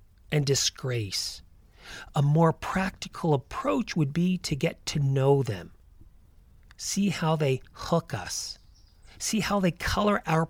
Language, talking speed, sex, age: English, 130 wpm, male, 40-59